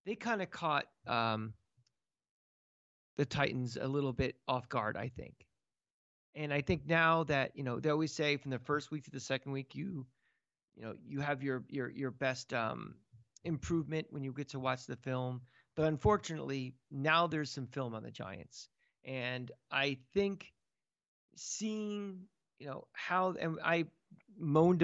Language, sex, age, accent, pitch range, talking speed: English, male, 40-59, American, 130-160 Hz, 165 wpm